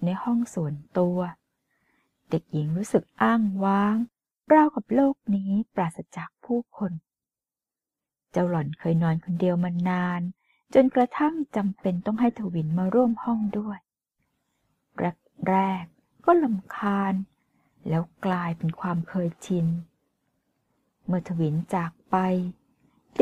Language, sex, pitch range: Thai, female, 170-220 Hz